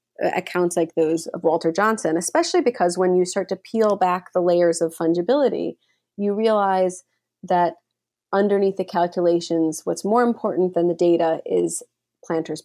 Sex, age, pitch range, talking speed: female, 30-49, 170-195 Hz, 150 wpm